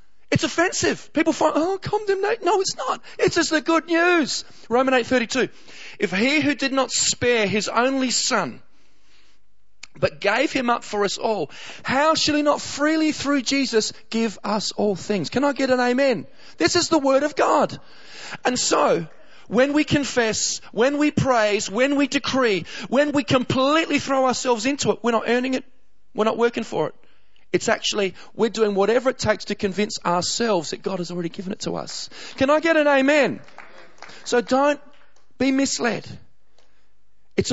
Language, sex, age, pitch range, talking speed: English, male, 30-49, 225-295 Hz, 175 wpm